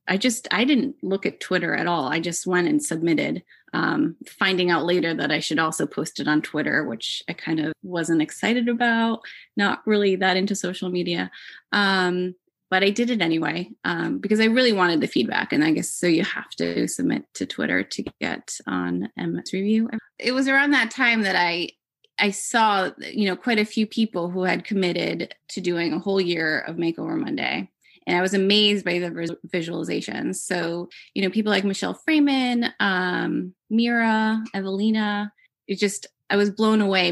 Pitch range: 175-225 Hz